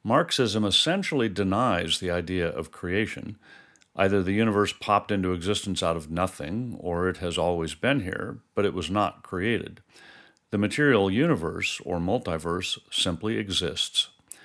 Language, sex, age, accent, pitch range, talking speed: English, male, 50-69, American, 90-110 Hz, 140 wpm